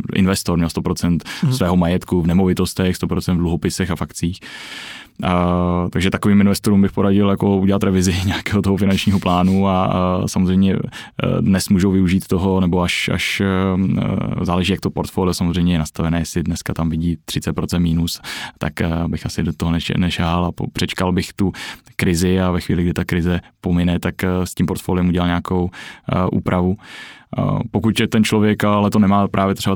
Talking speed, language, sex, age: 175 wpm, Czech, male, 20-39